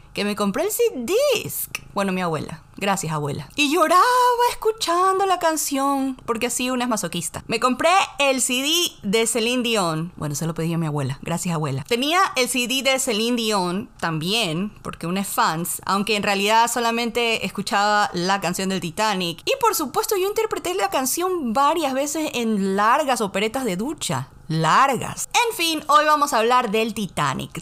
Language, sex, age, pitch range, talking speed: Spanish, female, 30-49, 190-300 Hz, 170 wpm